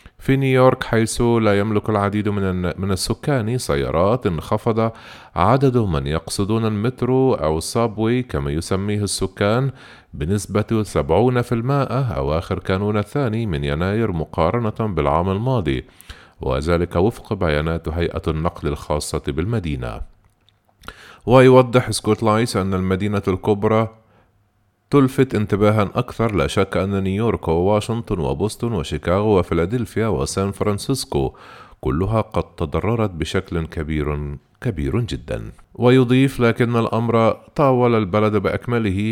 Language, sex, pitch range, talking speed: Arabic, male, 90-115 Hz, 105 wpm